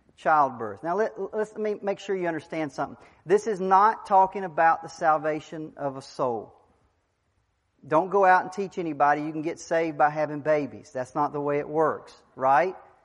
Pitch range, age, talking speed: 155-200 Hz, 40-59, 185 wpm